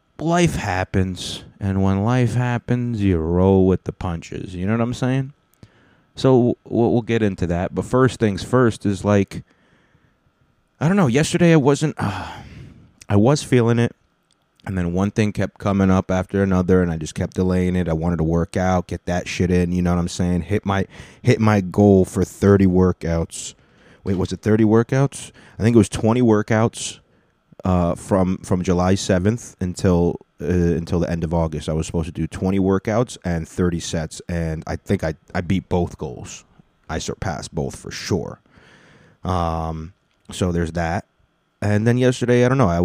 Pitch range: 85-110 Hz